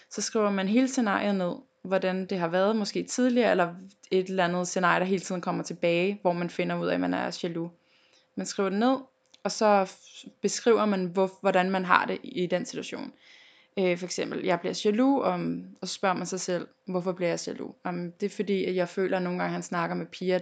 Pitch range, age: 180-210 Hz, 20-39